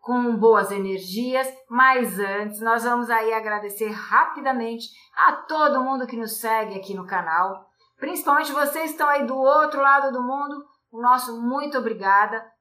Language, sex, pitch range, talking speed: Portuguese, female, 215-260 Hz, 155 wpm